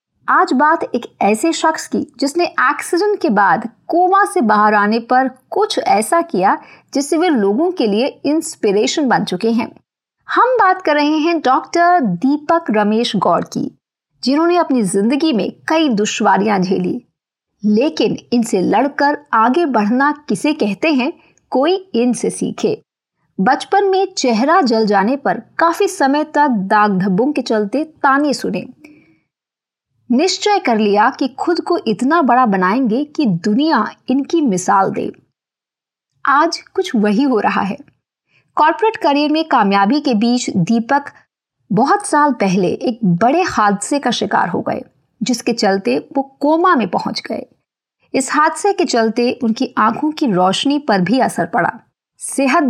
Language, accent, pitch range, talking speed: Hindi, native, 220-320 Hz, 115 wpm